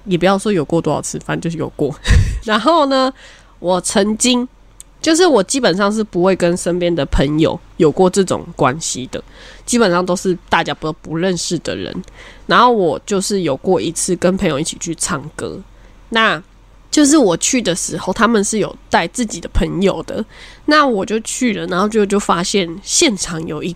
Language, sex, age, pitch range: Chinese, female, 20-39, 175-260 Hz